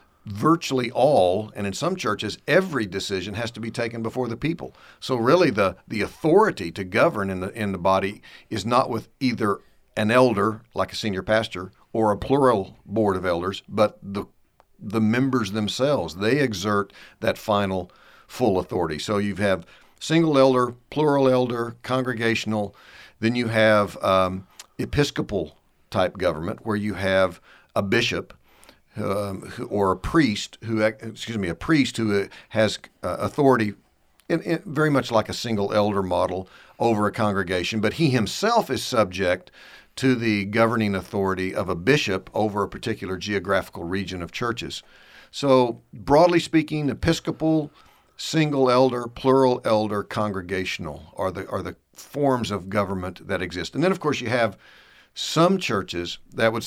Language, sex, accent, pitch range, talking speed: English, male, American, 100-130 Hz, 150 wpm